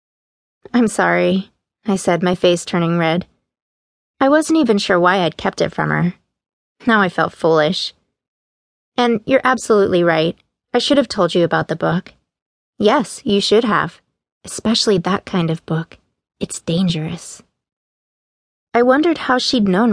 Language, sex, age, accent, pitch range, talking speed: English, female, 30-49, American, 165-225 Hz, 150 wpm